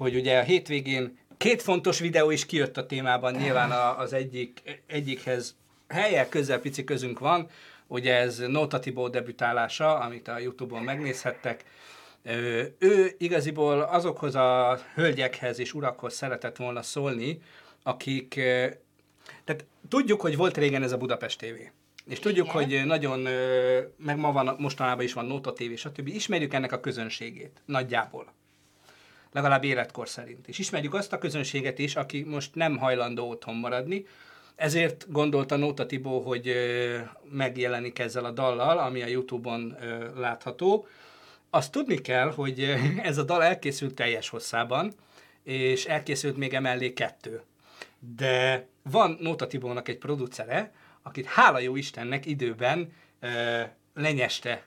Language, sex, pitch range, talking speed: Hungarian, male, 125-150 Hz, 135 wpm